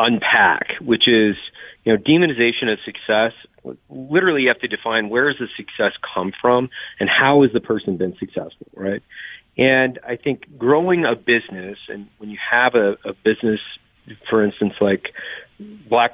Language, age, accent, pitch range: English, 40-59, American, 100-130 Hz